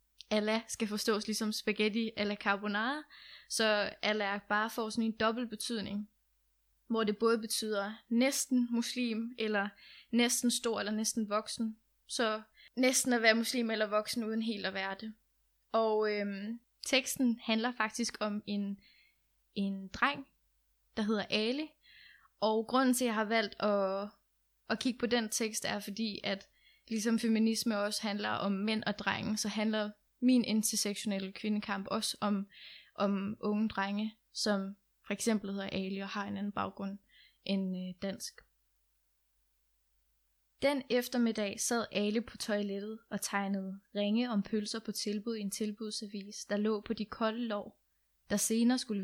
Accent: native